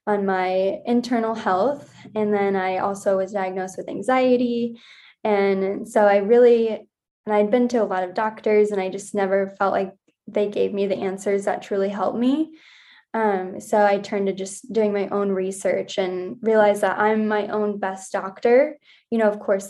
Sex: female